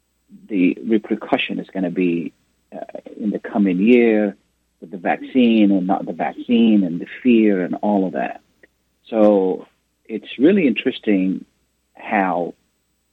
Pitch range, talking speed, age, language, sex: 95-110 Hz, 135 wpm, 40-59, Arabic, male